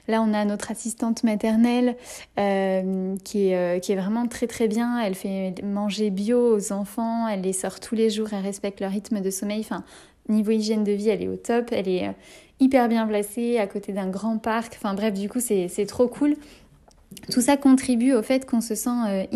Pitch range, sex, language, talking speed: 200-235 Hz, female, French, 210 wpm